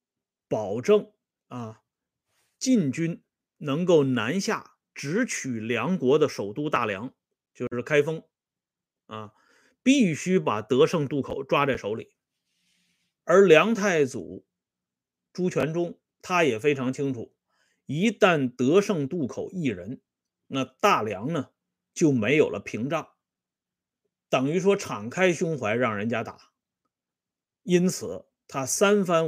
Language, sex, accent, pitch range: Swedish, male, Chinese, 120-200 Hz